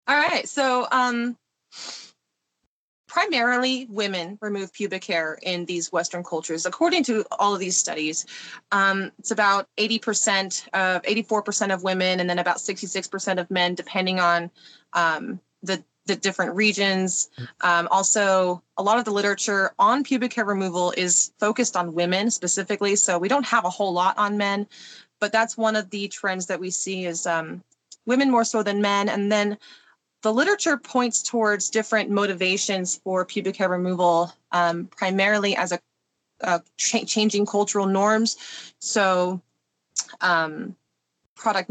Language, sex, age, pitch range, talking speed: English, female, 20-39, 175-210 Hz, 150 wpm